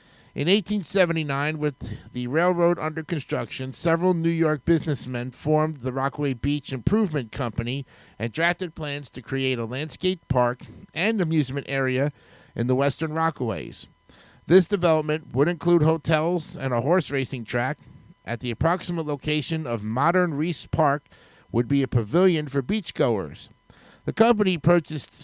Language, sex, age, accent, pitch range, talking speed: English, male, 50-69, American, 130-165 Hz, 140 wpm